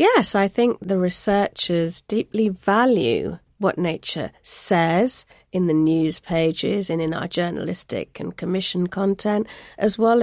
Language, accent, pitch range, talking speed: English, British, 180-220 Hz, 135 wpm